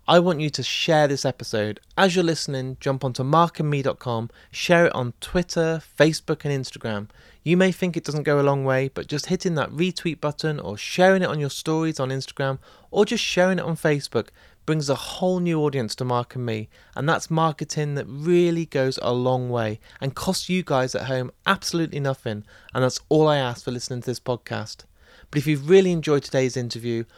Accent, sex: British, male